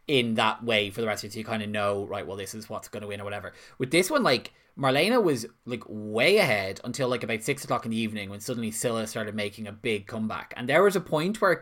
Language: English